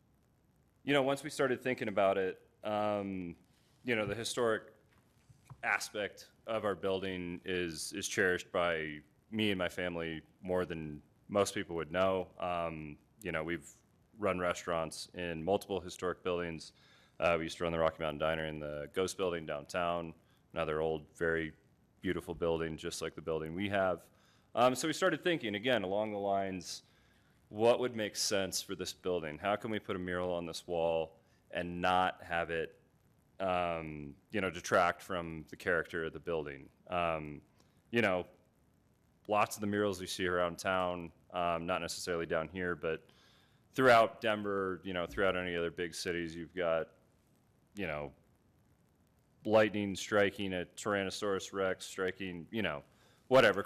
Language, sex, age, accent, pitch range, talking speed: English, male, 30-49, American, 85-105 Hz, 160 wpm